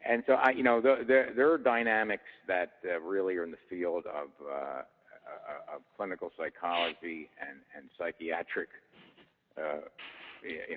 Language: English